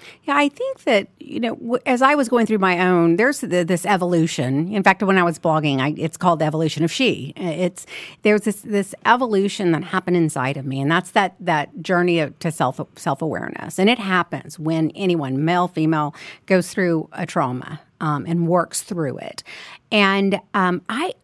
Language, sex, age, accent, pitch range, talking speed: English, female, 50-69, American, 165-220 Hz, 190 wpm